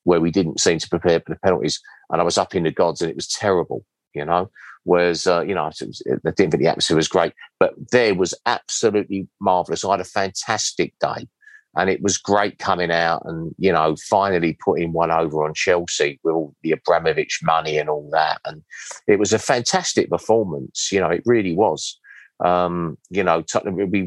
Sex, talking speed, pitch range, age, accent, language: male, 205 wpm, 85-110 Hz, 40-59, British, English